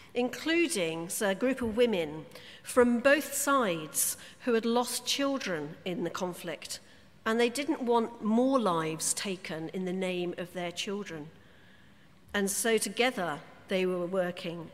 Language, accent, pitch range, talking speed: English, British, 180-235 Hz, 140 wpm